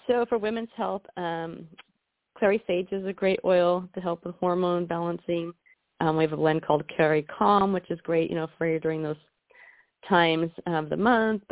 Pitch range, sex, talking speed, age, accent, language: 155-180 Hz, female, 195 wpm, 30-49, American, English